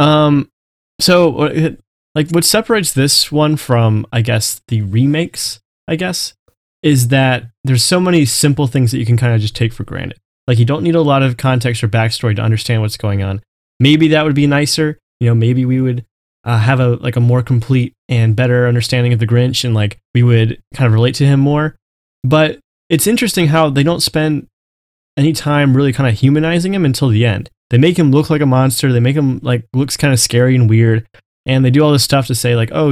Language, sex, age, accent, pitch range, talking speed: English, male, 20-39, American, 115-150 Hz, 220 wpm